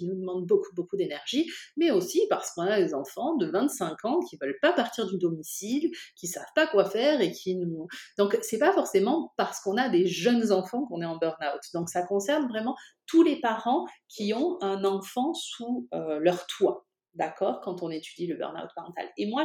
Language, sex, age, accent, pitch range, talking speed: French, female, 30-49, French, 175-260 Hz, 210 wpm